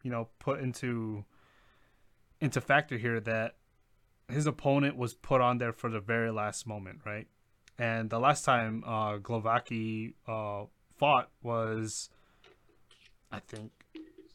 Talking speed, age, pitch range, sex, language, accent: 130 wpm, 20-39, 110-130 Hz, male, English, American